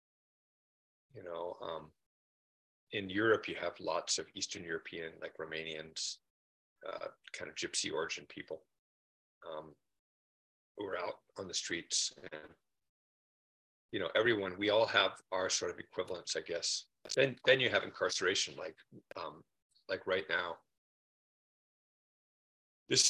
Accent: American